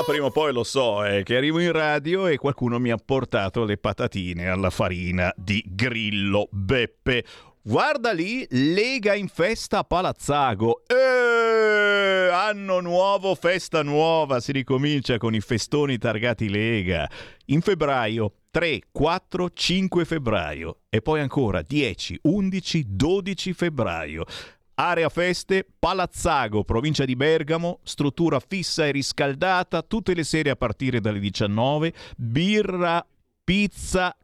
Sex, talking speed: male, 130 wpm